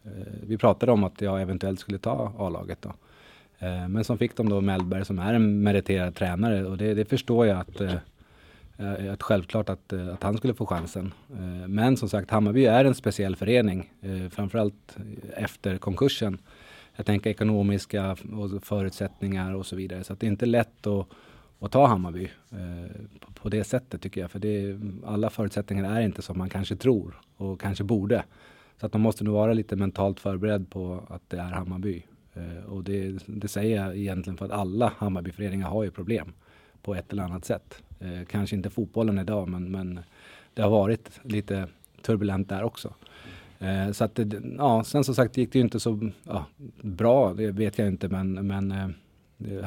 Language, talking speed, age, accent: Swedish, 180 wpm, 30-49, native